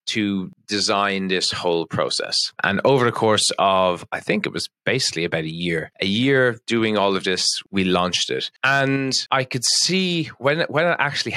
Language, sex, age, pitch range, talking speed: English, male, 20-39, 90-120 Hz, 195 wpm